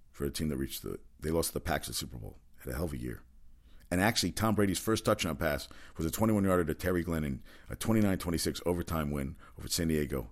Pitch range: 70-95 Hz